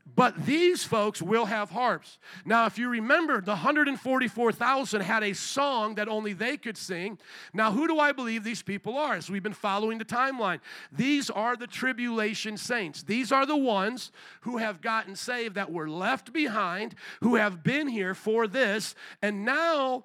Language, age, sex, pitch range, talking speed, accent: English, 50-69, male, 195-240 Hz, 175 wpm, American